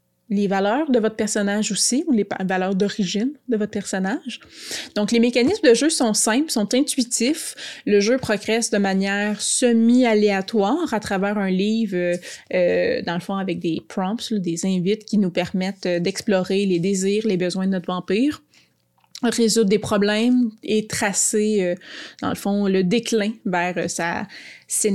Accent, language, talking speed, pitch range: Canadian, French, 165 wpm, 190-230 Hz